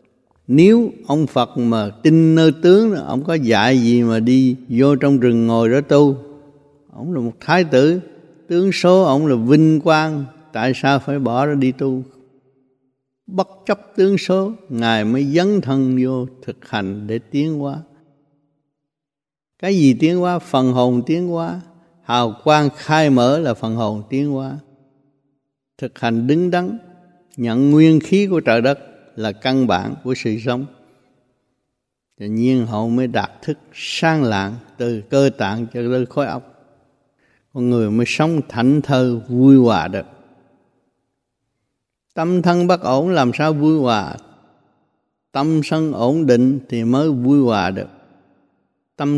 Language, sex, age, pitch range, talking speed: Vietnamese, male, 60-79, 125-150 Hz, 155 wpm